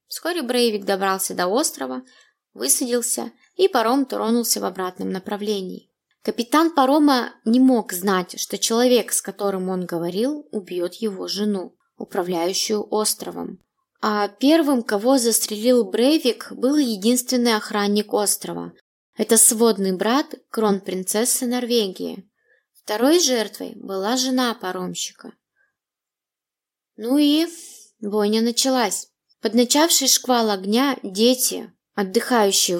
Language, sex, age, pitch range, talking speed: Russian, female, 20-39, 200-250 Hz, 105 wpm